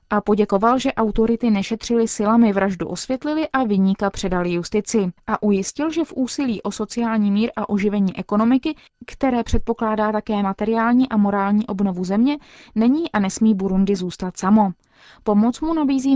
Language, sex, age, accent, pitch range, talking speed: Czech, female, 20-39, native, 195-240 Hz, 150 wpm